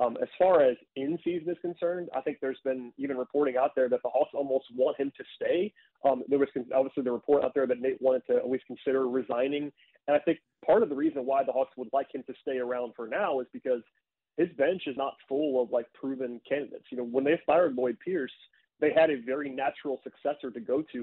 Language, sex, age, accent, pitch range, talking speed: English, male, 30-49, American, 125-155 Hz, 240 wpm